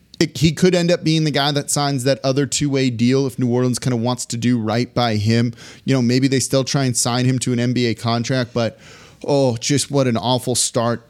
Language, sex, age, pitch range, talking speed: English, male, 30-49, 115-135 Hz, 240 wpm